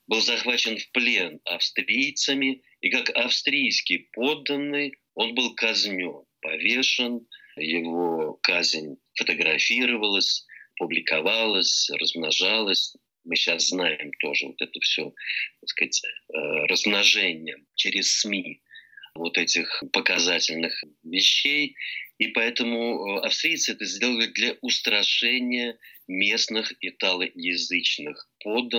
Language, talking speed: Russian, 90 wpm